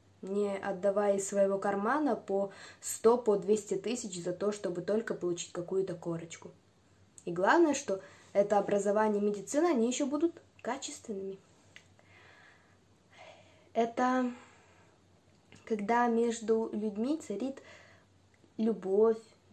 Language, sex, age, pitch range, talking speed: Russian, female, 20-39, 200-300 Hz, 100 wpm